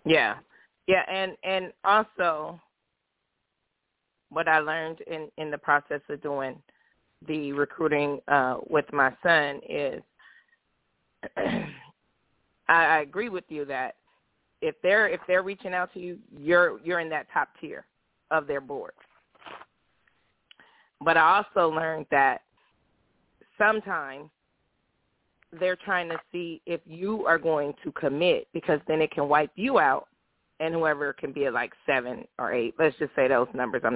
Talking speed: 145 wpm